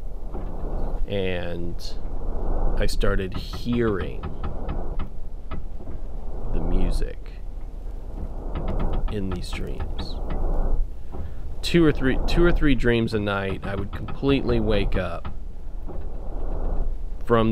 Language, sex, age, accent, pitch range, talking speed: English, male, 30-49, American, 80-100 Hz, 80 wpm